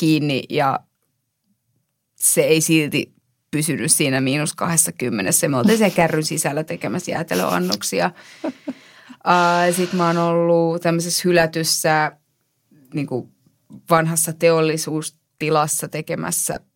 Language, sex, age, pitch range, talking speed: Finnish, female, 30-49, 155-190 Hz, 80 wpm